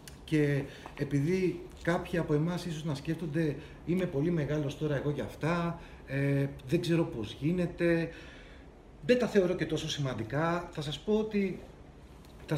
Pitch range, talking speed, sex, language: 140-170 Hz, 150 wpm, male, Greek